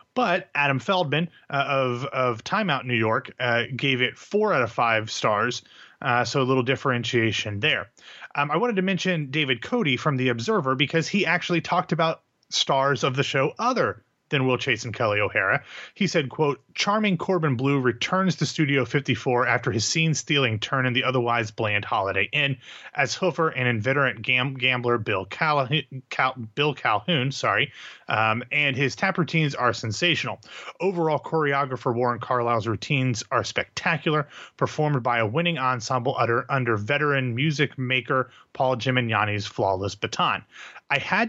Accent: American